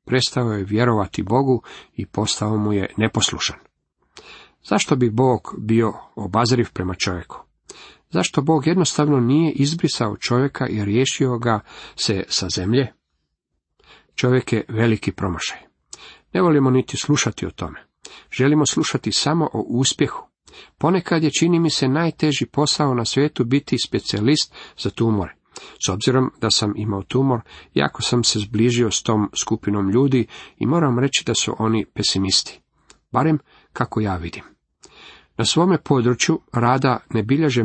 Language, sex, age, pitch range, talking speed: Croatian, male, 50-69, 105-135 Hz, 140 wpm